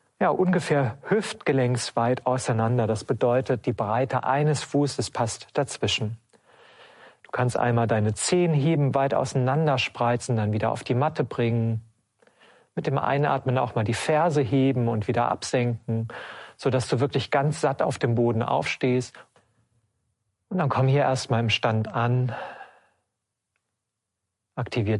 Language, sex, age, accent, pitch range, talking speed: German, male, 40-59, German, 110-130 Hz, 135 wpm